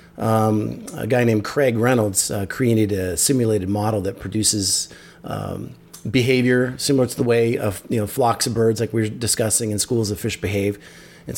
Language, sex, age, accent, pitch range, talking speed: English, male, 30-49, American, 105-125 Hz, 185 wpm